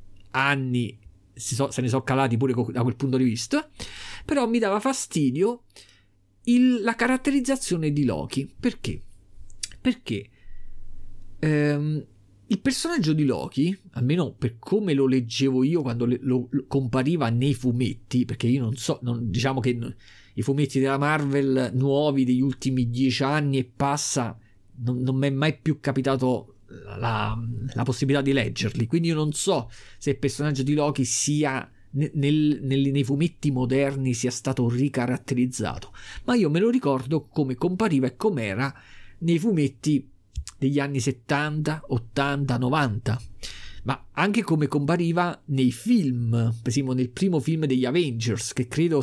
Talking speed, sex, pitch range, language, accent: 140 wpm, male, 120-150 Hz, Italian, native